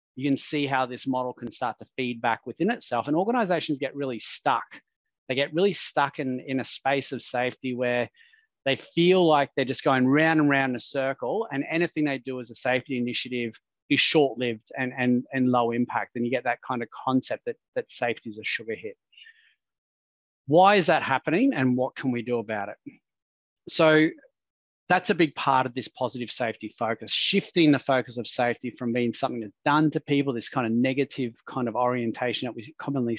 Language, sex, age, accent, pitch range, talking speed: English, male, 30-49, Australian, 120-155 Hz, 205 wpm